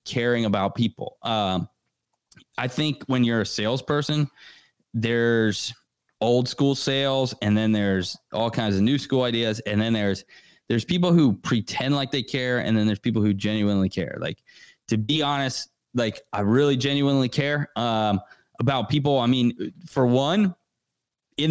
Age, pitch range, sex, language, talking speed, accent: 20-39, 105-135 Hz, male, English, 160 wpm, American